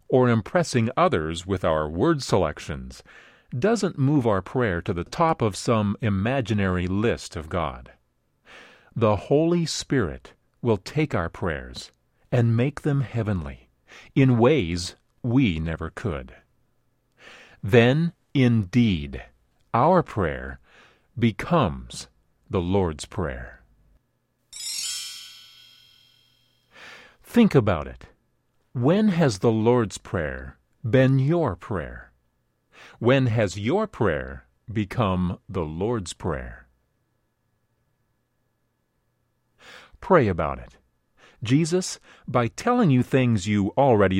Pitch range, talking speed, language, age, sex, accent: 95-130 Hz, 100 wpm, English, 50-69, male, American